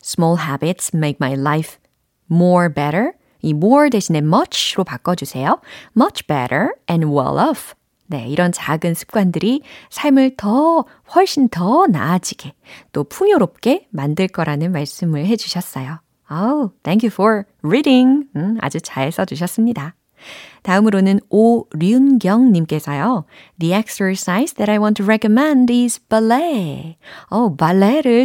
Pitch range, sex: 160-245 Hz, female